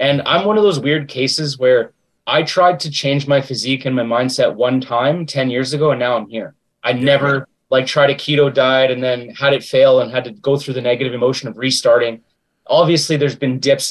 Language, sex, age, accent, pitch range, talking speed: English, male, 30-49, American, 130-155 Hz, 225 wpm